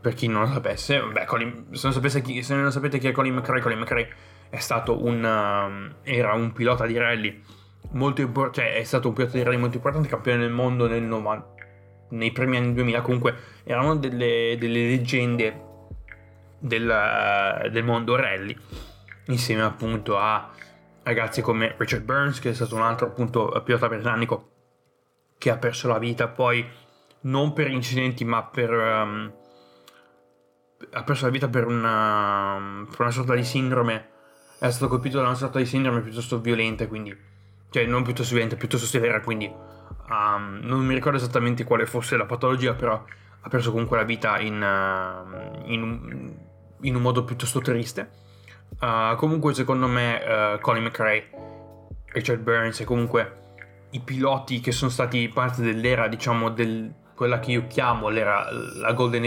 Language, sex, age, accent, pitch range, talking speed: Italian, male, 20-39, native, 110-125 Hz, 165 wpm